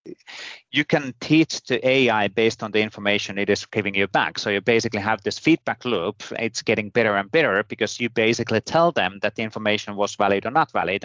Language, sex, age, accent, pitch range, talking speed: English, male, 30-49, Finnish, 100-120 Hz, 210 wpm